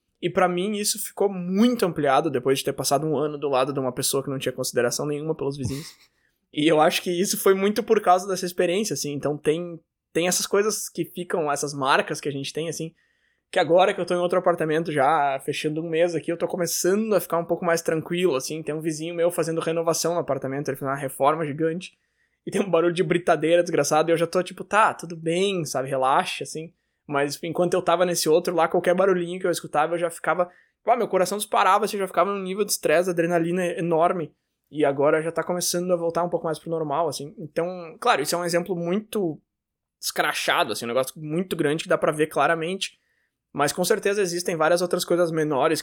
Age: 20-39